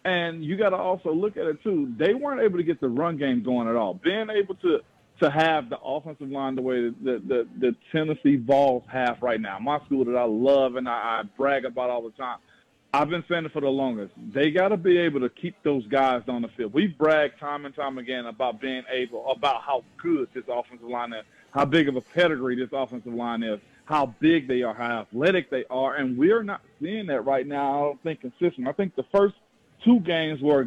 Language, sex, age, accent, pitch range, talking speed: English, male, 40-59, American, 125-170 Hz, 240 wpm